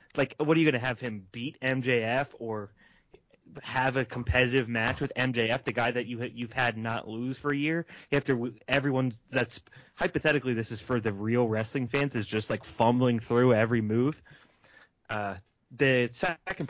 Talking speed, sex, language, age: 175 wpm, male, English, 20-39